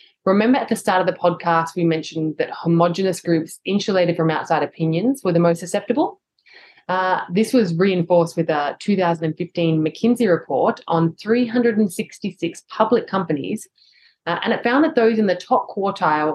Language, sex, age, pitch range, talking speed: English, female, 20-39, 160-215 Hz, 160 wpm